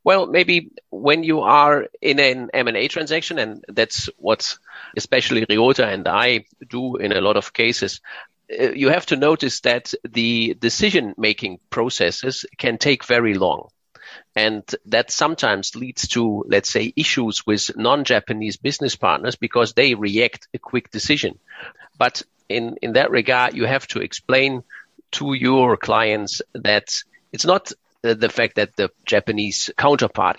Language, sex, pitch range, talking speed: German, male, 110-145 Hz, 145 wpm